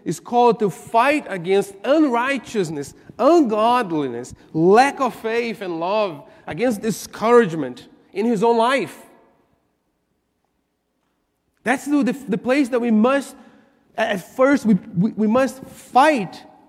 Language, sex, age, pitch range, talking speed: English, male, 40-59, 215-275 Hz, 120 wpm